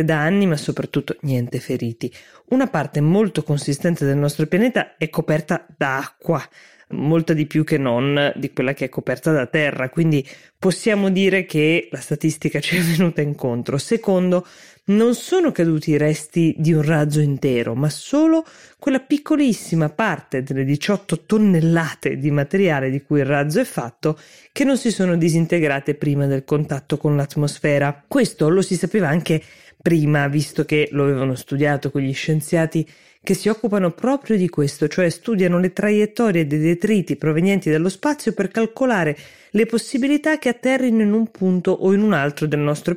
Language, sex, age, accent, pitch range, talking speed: Italian, female, 20-39, native, 145-195 Hz, 165 wpm